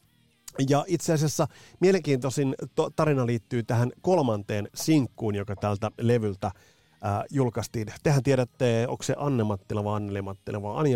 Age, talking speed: 30-49, 125 wpm